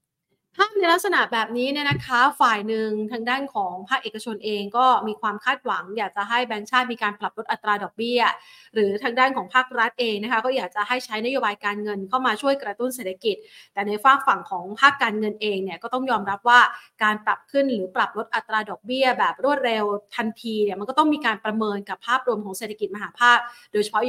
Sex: female